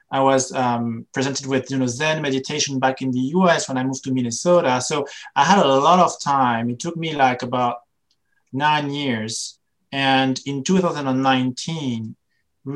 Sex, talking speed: male, 165 wpm